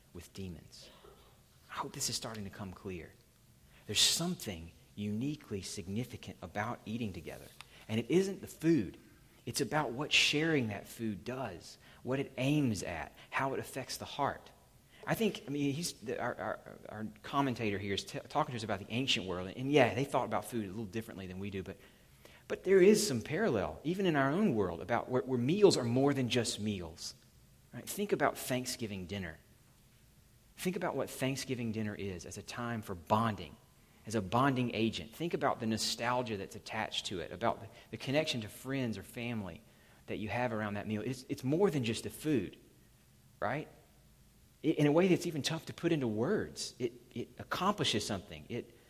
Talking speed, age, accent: 185 wpm, 30-49, American